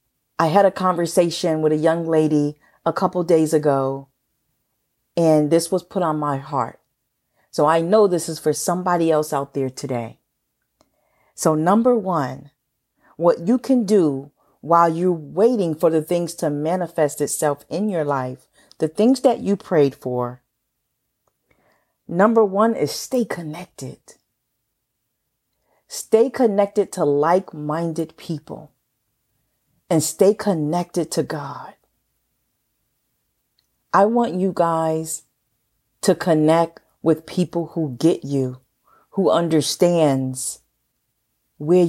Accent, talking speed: American, 120 wpm